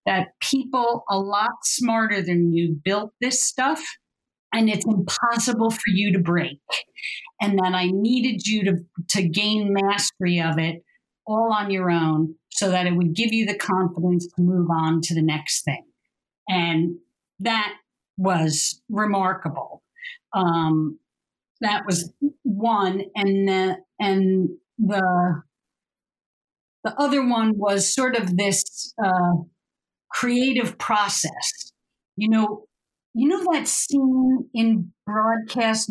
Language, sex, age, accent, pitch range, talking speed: English, female, 50-69, American, 185-235 Hz, 125 wpm